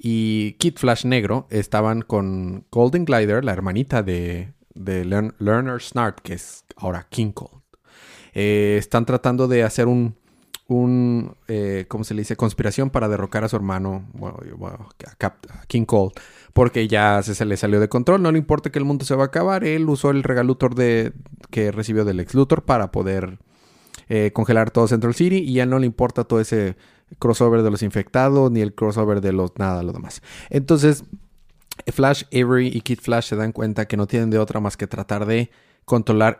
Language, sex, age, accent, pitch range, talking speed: Spanish, male, 30-49, Mexican, 105-130 Hz, 190 wpm